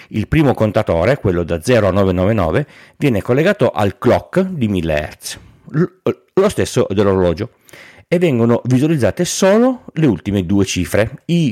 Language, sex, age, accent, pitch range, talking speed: Italian, male, 40-59, native, 95-130 Hz, 140 wpm